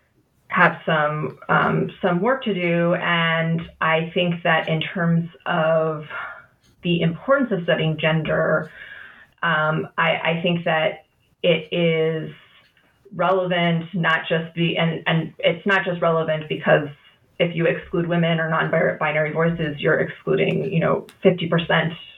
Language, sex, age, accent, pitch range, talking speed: English, female, 30-49, American, 155-175 Hz, 140 wpm